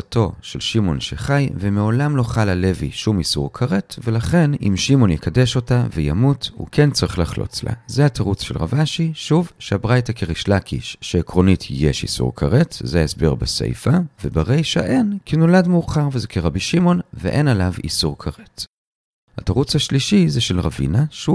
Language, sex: Hebrew, male